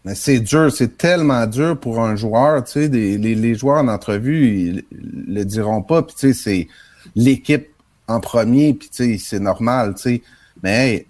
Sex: male